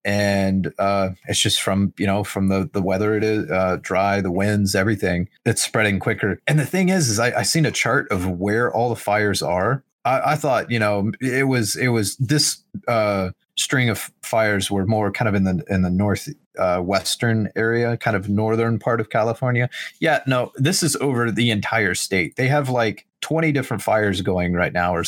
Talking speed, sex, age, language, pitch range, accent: 210 wpm, male, 30-49, English, 100-125 Hz, American